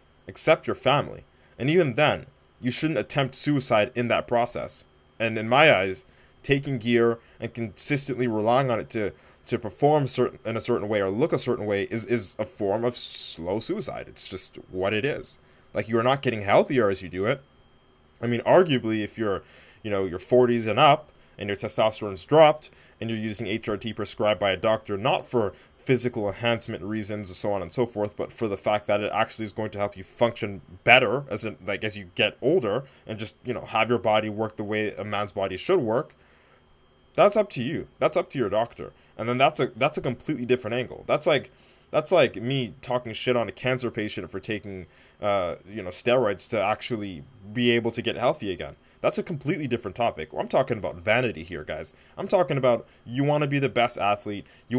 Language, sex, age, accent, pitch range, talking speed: English, male, 20-39, American, 100-125 Hz, 210 wpm